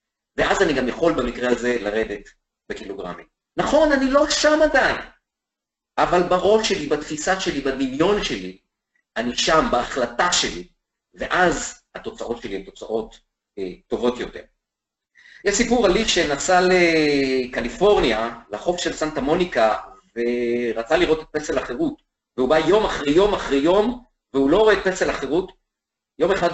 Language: Hebrew